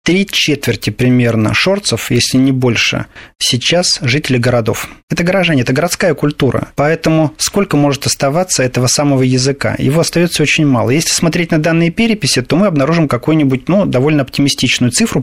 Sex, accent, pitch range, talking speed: male, native, 125-160 Hz, 155 wpm